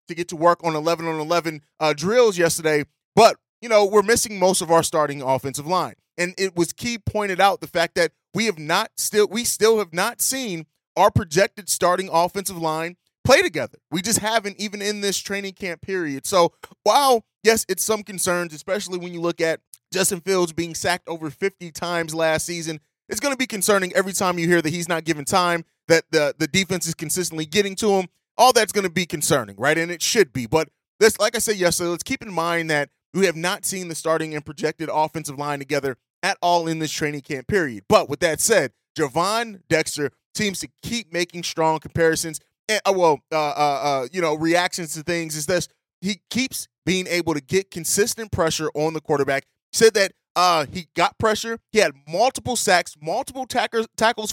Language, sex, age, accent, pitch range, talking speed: English, male, 30-49, American, 160-200 Hz, 205 wpm